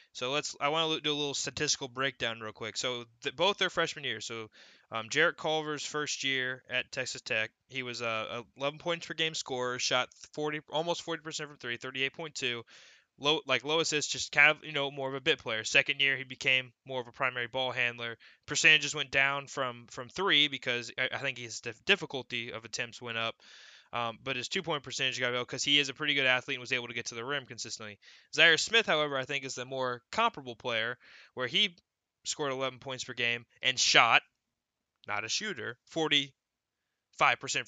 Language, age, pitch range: English, 20-39, 125-150 Hz